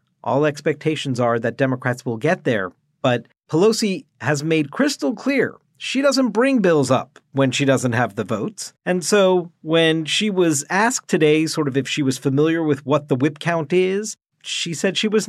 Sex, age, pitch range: male, 40-59, 140-195 Hz